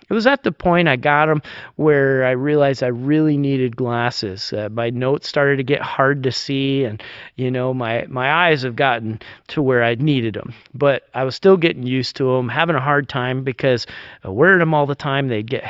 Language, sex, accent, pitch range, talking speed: English, male, American, 125-165 Hz, 220 wpm